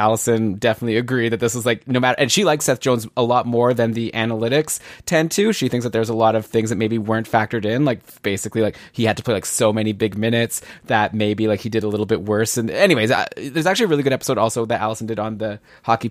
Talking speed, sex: 270 wpm, male